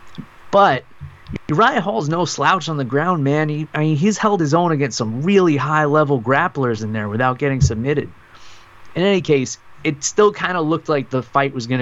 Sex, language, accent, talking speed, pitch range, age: male, English, American, 200 wpm, 115-150 Hz, 20-39